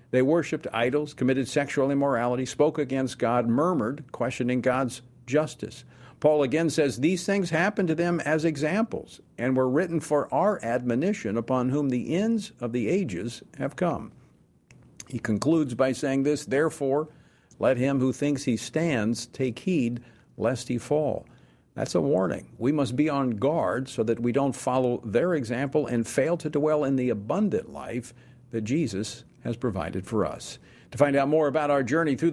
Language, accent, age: English, American, 50-69